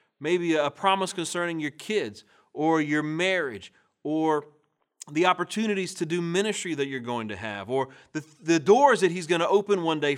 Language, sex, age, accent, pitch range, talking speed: English, male, 40-59, American, 135-200 Hz, 185 wpm